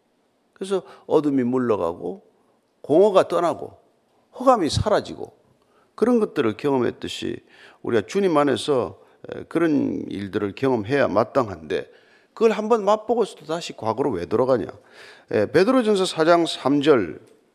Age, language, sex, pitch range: 40-59, Korean, male, 135-210 Hz